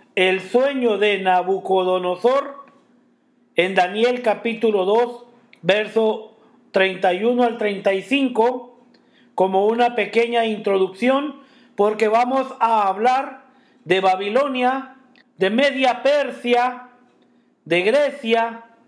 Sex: male